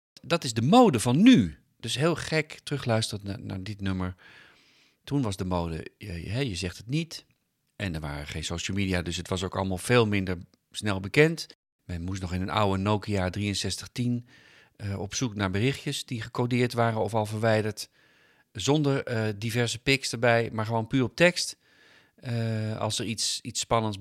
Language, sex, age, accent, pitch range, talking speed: Dutch, male, 40-59, Dutch, 95-125 Hz, 180 wpm